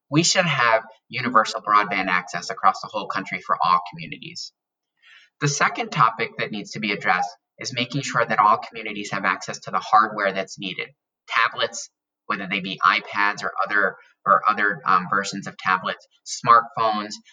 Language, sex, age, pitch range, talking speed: English, male, 20-39, 100-145 Hz, 165 wpm